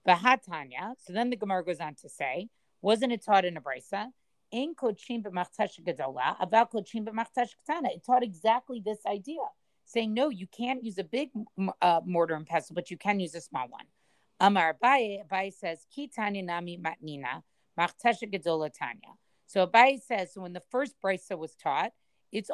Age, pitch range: 40-59, 175-230 Hz